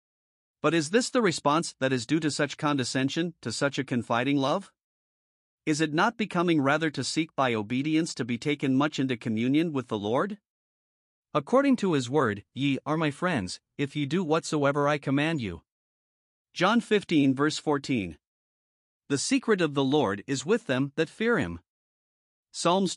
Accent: American